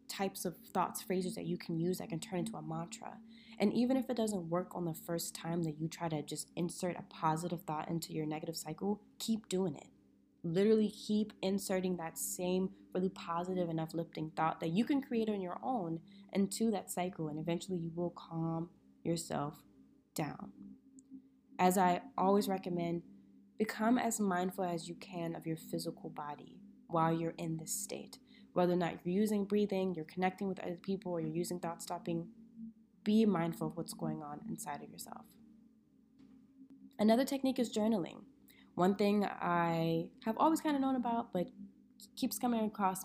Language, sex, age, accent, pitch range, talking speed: English, female, 20-39, American, 170-225 Hz, 175 wpm